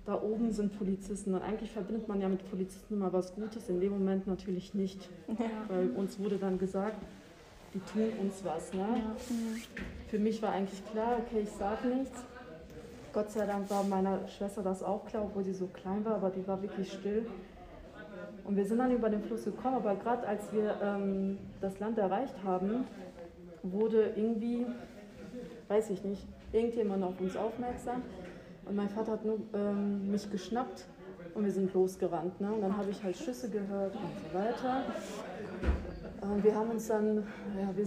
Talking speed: 175 wpm